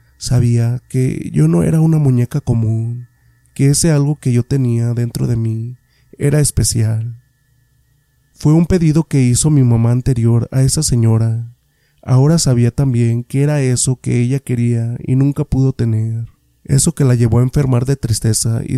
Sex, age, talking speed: male, 30-49, 165 wpm